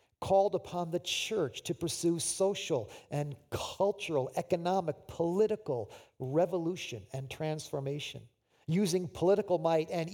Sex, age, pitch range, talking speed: male, 50-69, 130-190 Hz, 105 wpm